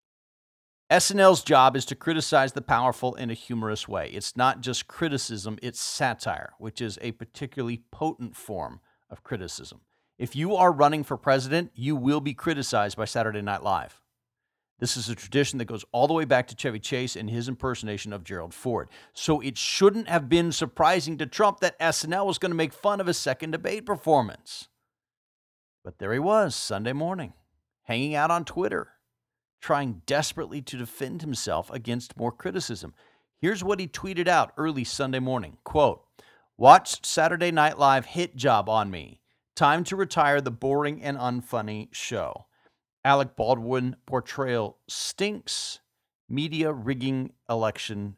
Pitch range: 115-160 Hz